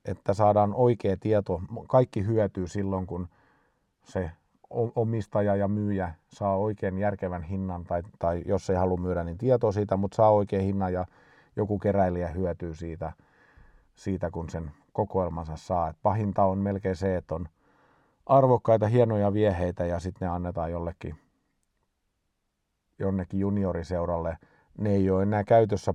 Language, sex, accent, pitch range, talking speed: Finnish, male, native, 85-105 Hz, 140 wpm